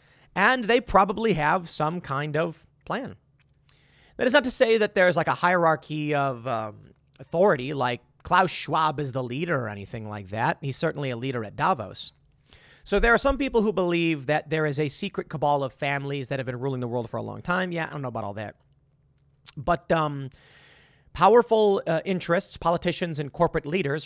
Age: 30-49